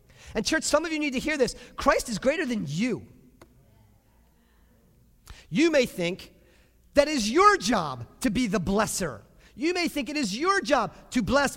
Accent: American